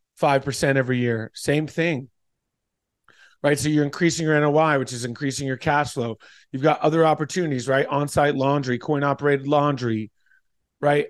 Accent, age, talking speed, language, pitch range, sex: American, 30-49, 155 wpm, English, 130-160 Hz, male